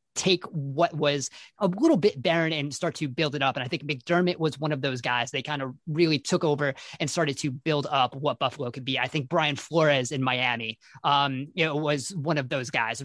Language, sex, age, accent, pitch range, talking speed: English, male, 20-39, American, 140-170 Hz, 235 wpm